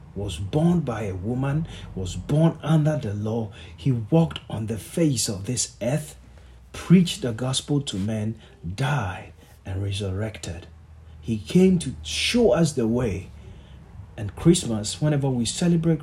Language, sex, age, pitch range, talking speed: English, male, 40-59, 100-145 Hz, 140 wpm